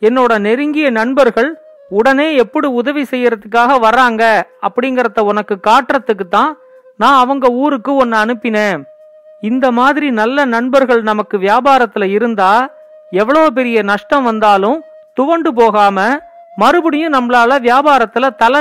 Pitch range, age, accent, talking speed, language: 220-275 Hz, 40-59, native, 75 wpm, Tamil